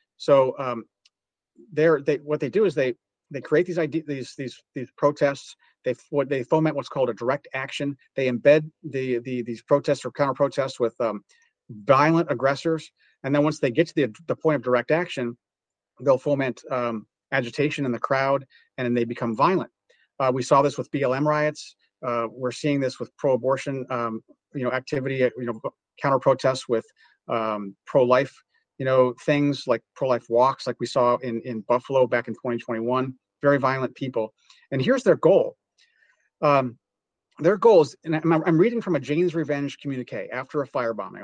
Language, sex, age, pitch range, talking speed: English, male, 40-59, 125-160 Hz, 185 wpm